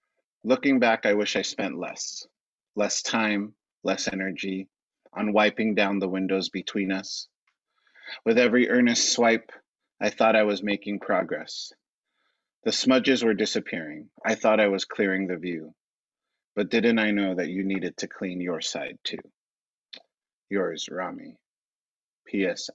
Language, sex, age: English, male, 30-49